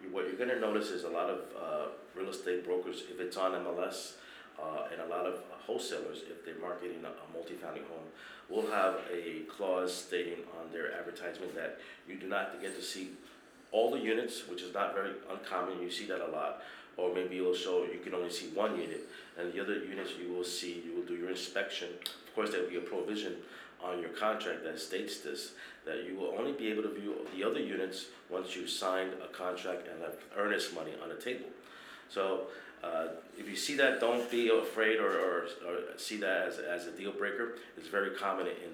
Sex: male